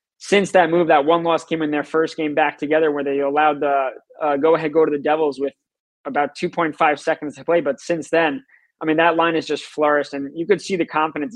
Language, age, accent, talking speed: English, 20-39, American, 220 wpm